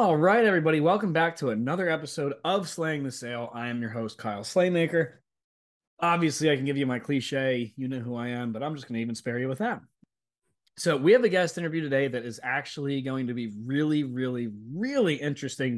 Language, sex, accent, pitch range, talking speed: English, male, American, 120-165 Hz, 215 wpm